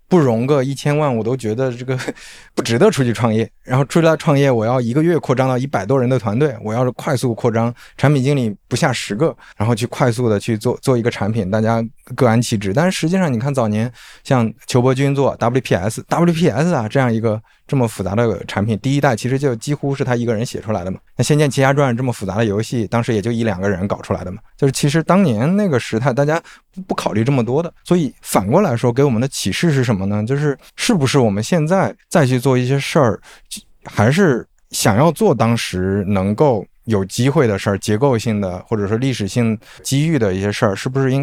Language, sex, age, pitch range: Chinese, male, 20-39, 110-140 Hz